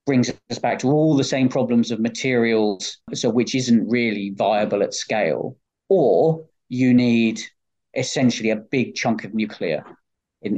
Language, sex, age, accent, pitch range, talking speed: English, male, 40-59, British, 115-135 Hz, 155 wpm